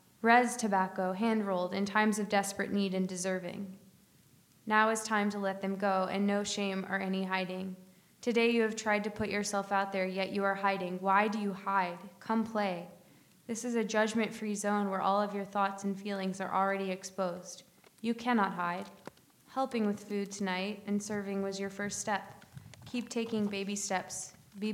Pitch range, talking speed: 190-210 Hz, 180 wpm